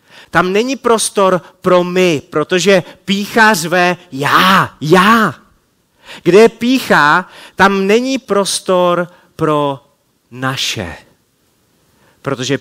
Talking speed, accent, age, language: 90 wpm, native, 30-49, Czech